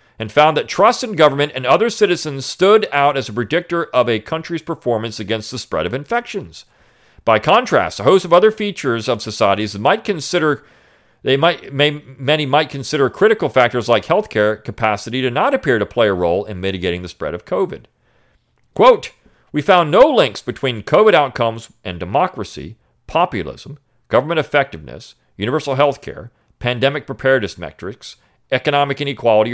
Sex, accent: male, American